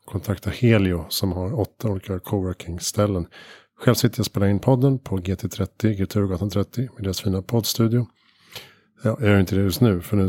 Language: Swedish